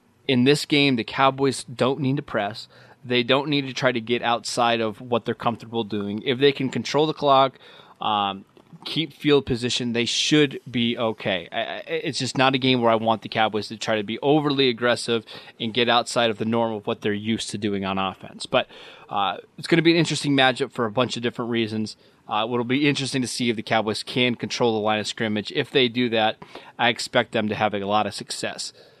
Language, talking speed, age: English, 225 wpm, 20-39